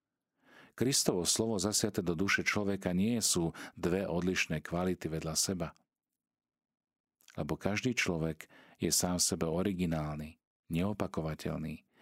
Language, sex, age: Slovak, male, 40-59